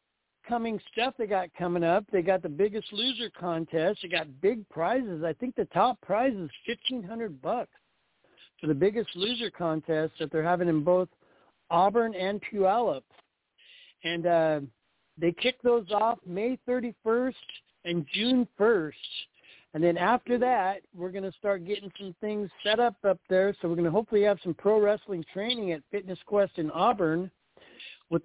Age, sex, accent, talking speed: 60-79, male, American, 165 wpm